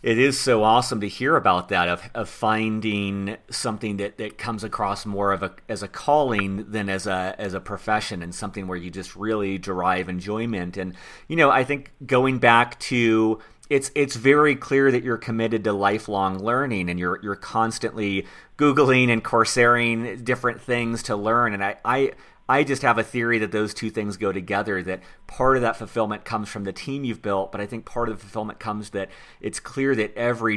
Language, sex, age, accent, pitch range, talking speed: English, male, 40-59, American, 95-115 Hz, 200 wpm